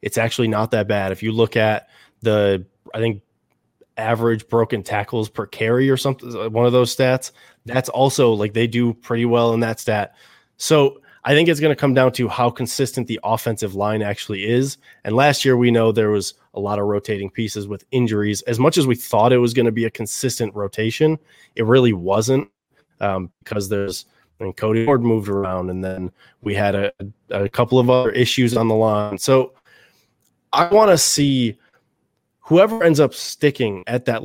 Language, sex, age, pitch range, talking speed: English, male, 20-39, 105-130 Hz, 195 wpm